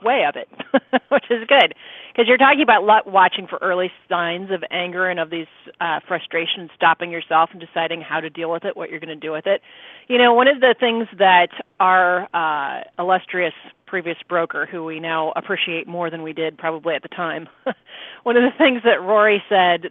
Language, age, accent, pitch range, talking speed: English, 40-59, American, 170-225 Hz, 205 wpm